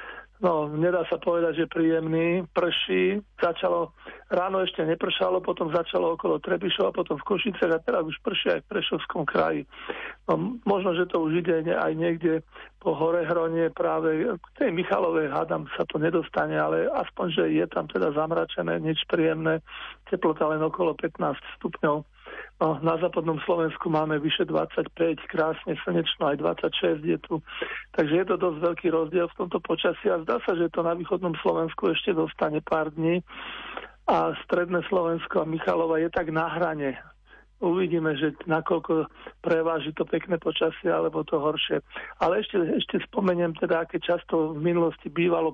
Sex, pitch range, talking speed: male, 160-175 Hz, 160 wpm